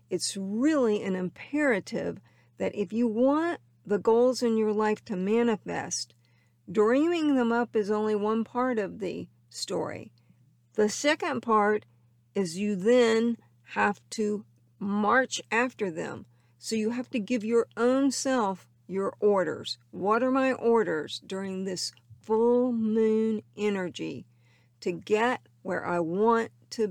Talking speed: 135 wpm